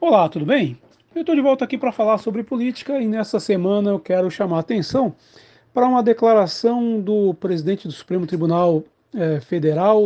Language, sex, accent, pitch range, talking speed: Portuguese, male, Brazilian, 165-220 Hz, 180 wpm